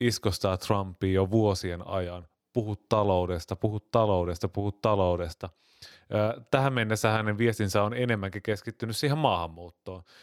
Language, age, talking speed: Finnish, 30-49, 115 wpm